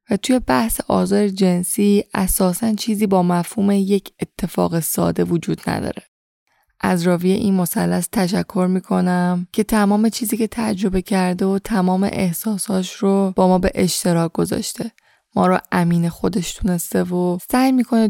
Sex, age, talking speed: female, 10-29, 145 wpm